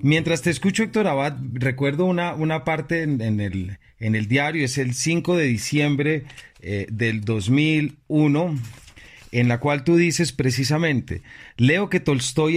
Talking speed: 155 wpm